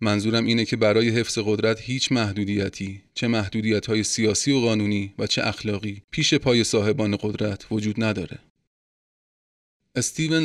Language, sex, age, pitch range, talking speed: Persian, male, 30-49, 105-130 Hz, 130 wpm